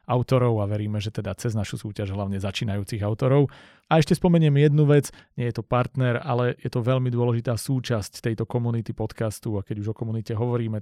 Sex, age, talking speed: male, 40-59, 195 wpm